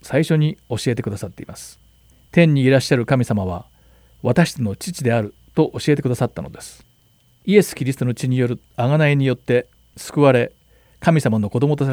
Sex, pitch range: male, 110-145 Hz